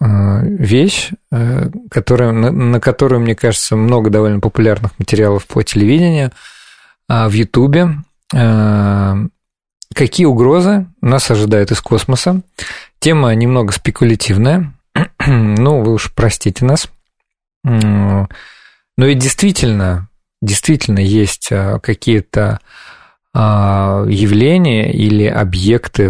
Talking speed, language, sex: 85 wpm, Russian, male